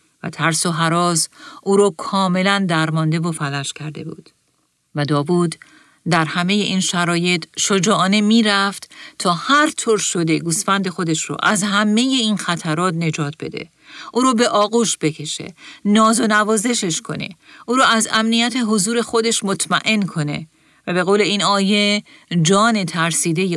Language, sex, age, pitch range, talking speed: Persian, female, 40-59, 165-220 Hz, 150 wpm